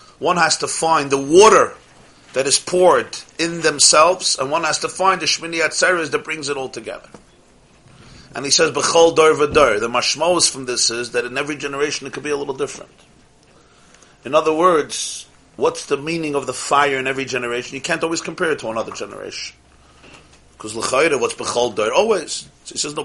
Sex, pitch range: male, 145-185 Hz